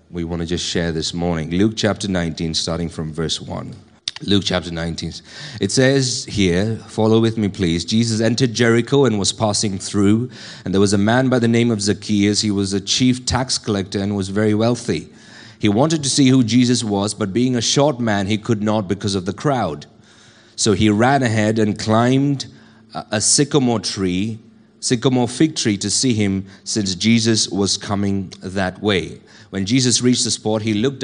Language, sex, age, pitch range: English, male, 30-49, 100-125 Hz